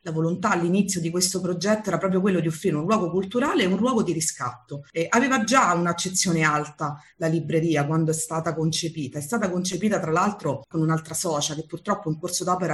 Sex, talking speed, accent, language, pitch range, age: female, 205 wpm, native, Italian, 150-180 Hz, 30-49